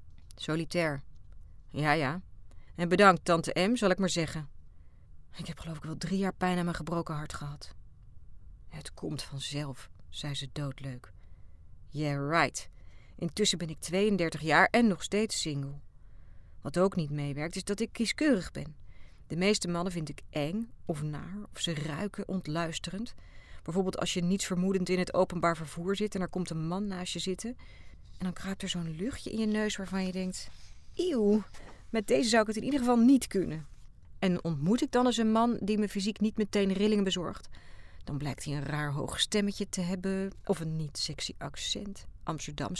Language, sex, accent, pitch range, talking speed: Dutch, female, Dutch, 140-195 Hz, 185 wpm